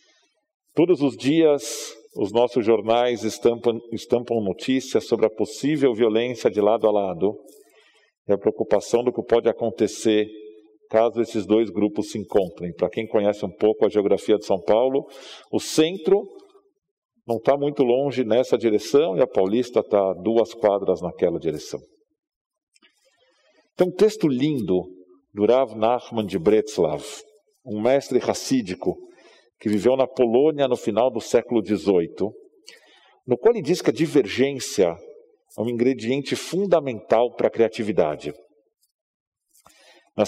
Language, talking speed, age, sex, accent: Portuguese, 135 wpm, 50-69, male, Brazilian